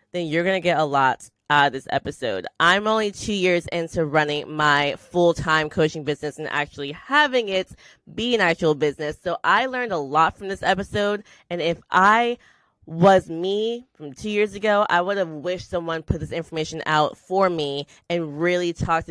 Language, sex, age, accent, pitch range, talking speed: English, female, 20-39, American, 160-210 Hz, 190 wpm